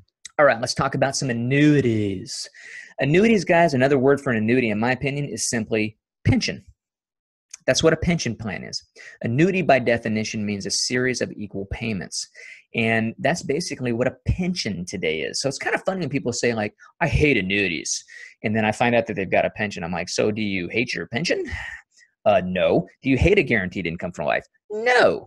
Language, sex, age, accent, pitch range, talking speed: English, male, 30-49, American, 115-170 Hz, 195 wpm